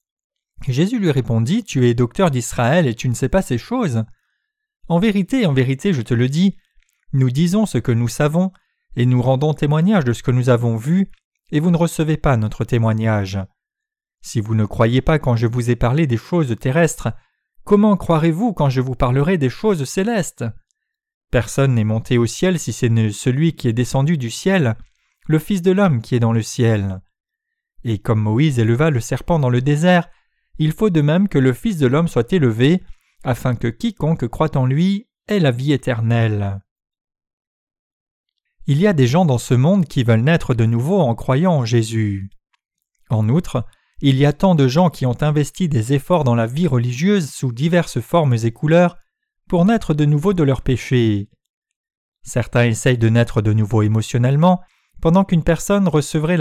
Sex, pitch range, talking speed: male, 120-180 Hz, 190 wpm